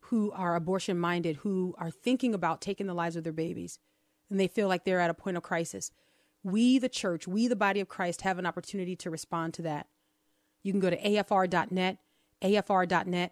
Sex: female